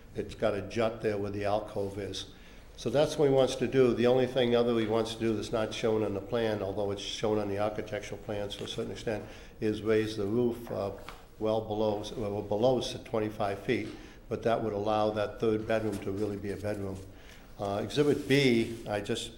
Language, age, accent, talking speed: English, 60-79, American, 215 wpm